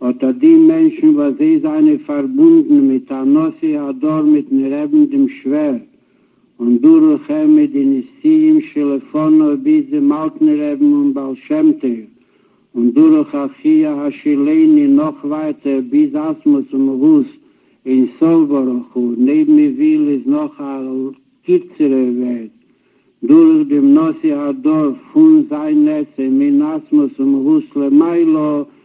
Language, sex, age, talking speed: Hebrew, male, 60-79, 100 wpm